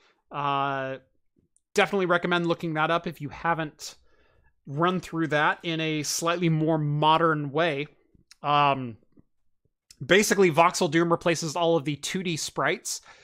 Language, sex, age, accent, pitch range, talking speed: English, male, 30-49, American, 145-175 Hz, 125 wpm